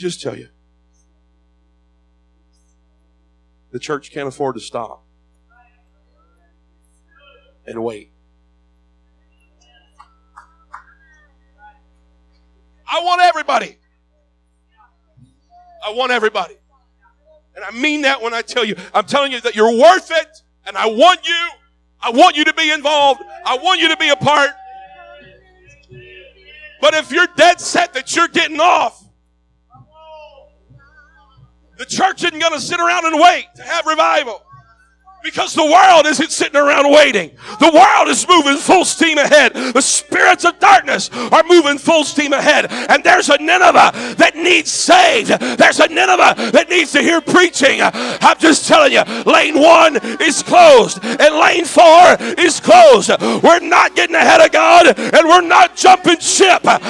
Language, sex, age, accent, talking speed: English, male, 50-69, American, 140 wpm